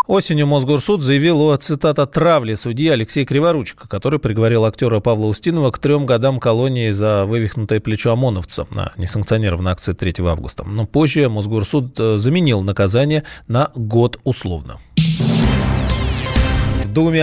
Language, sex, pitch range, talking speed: Russian, male, 105-145 Hz, 120 wpm